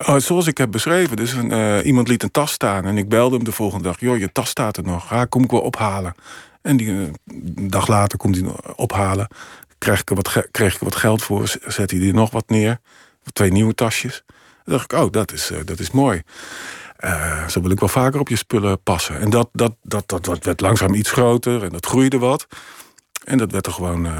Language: Dutch